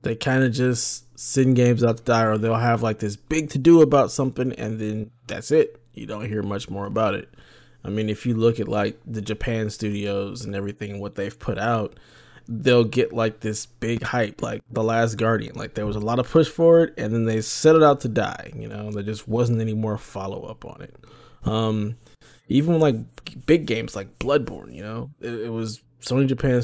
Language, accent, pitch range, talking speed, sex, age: English, American, 110-125 Hz, 220 wpm, male, 20-39